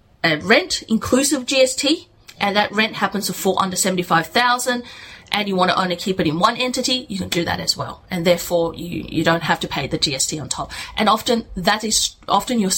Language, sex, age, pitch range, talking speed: English, female, 30-49, 175-245 Hz, 220 wpm